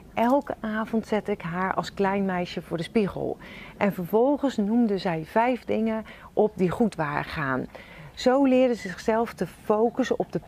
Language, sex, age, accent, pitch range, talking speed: Dutch, female, 40-59, Dutch, 175-220 Hz, 170 wpm